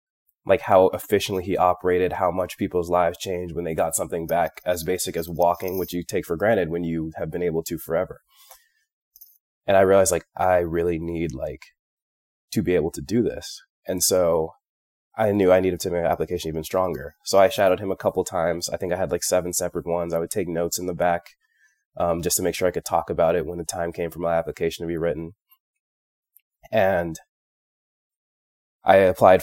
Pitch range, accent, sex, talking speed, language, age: 85-100 Hz, American, male, 210 wpm, English, 20-39